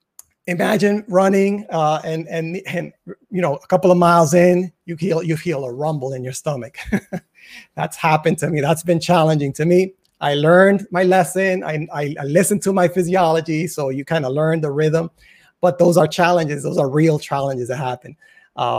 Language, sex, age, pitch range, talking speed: English, male, 30-49, 150-185 Hz, 190 wpm